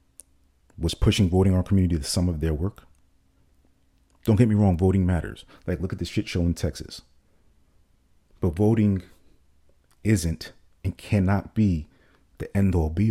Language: English